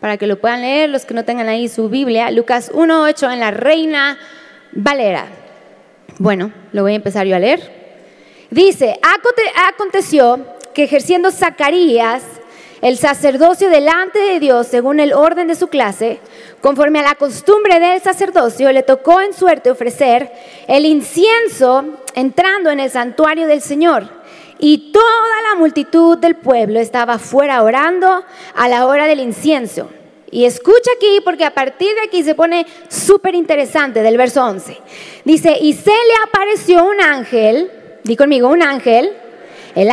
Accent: Mexican